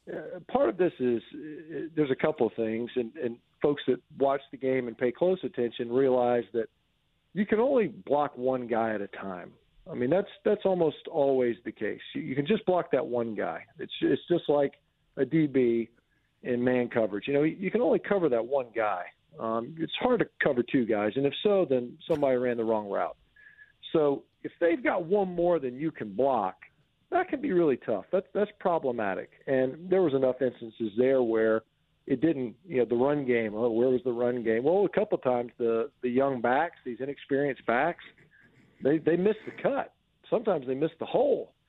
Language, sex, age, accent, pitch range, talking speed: English, male, 50-69, American, 125-180 Hz, 210 wpm